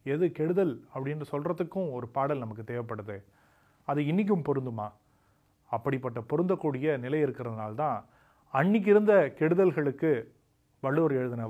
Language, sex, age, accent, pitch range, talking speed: Tamil, male, 30-49, native, 115-160 Hz, 105 wpm